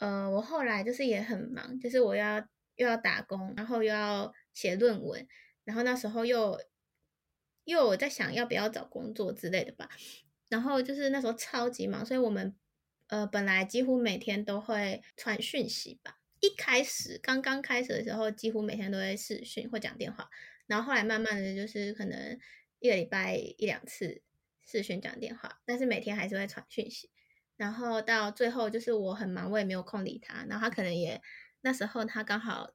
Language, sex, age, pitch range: Chinese, female, 20-39, 200-235 Hz